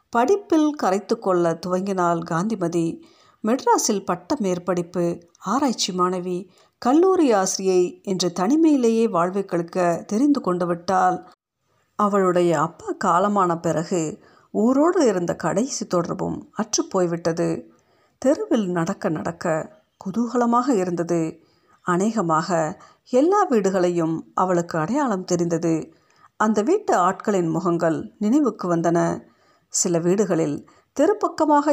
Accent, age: native, 50-69